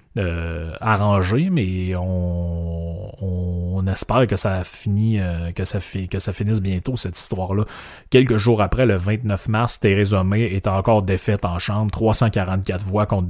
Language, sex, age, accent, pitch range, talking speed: French, male, 30-49, Canadian, 90-110 Hz, 165 wpm